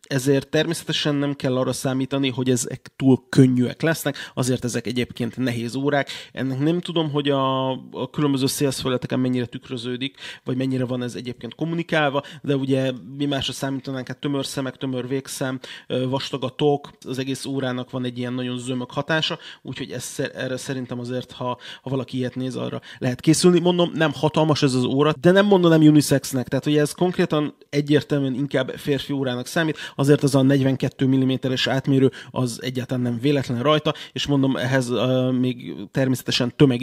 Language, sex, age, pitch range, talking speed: Hungarian, male, 30-49, 130-150 Hz, 165 wpm